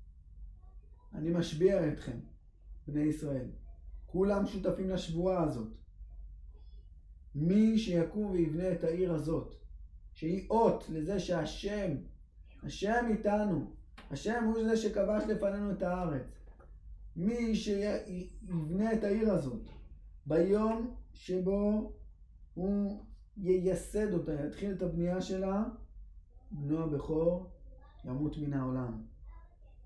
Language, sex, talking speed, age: Hebrew, male, 95 wpm, 20-39